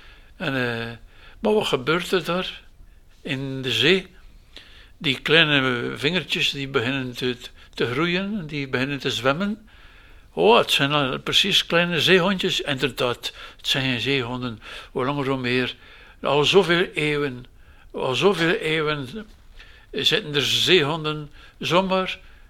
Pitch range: 130-165 Hz